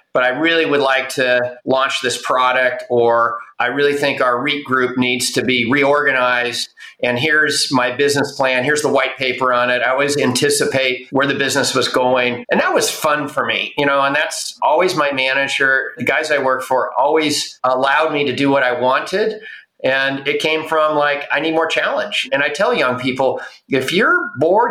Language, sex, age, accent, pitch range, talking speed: English, male, 50-69, American, 125-150 Hz, 200 wpm